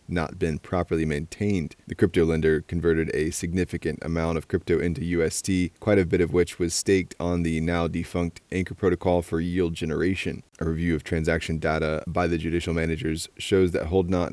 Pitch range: 80-90 Hz